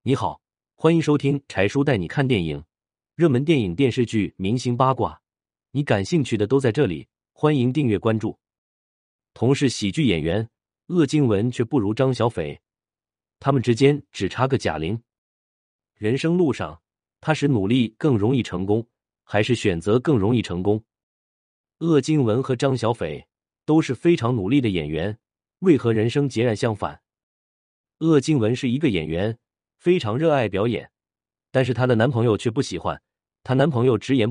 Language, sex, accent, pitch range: Chinese, male, native, 100-135 Hz